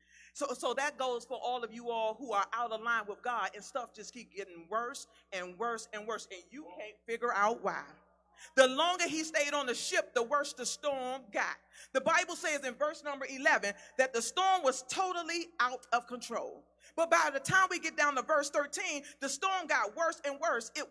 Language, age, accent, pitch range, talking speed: English, 40-59, American, 240-345 Hz, 220 wpm